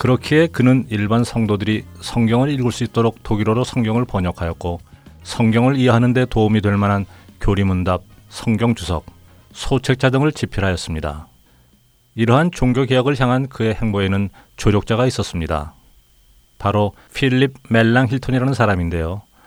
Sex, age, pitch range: male, 30-49, 95-125 Hz